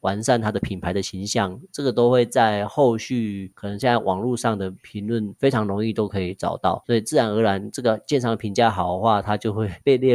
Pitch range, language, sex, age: 100-120 Hz, Chinese, male, 30-49